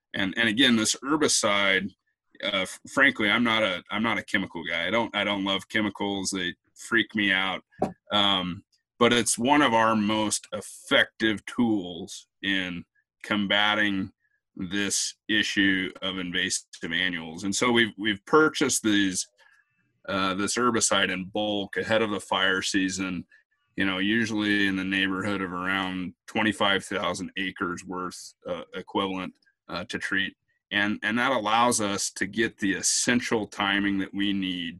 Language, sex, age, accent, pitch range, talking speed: English, male, 30-49, American, 95-105 Hz, 150 wpm